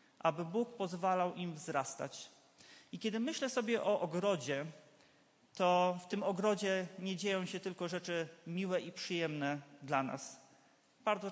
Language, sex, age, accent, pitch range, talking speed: Polish, male, 30-49, native, 155-195 Hz, 140 wpm